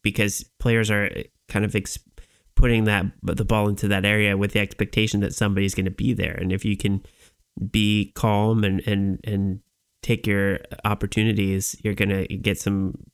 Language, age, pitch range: English, 30-49, 95-105 Hz